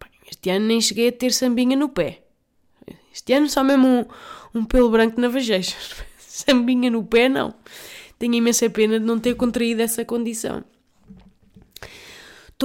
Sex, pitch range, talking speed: female, 190-235 Hz, 155 wpm